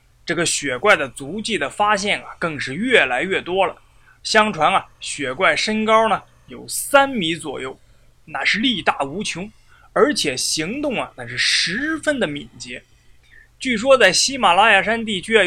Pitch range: 155-255 Hz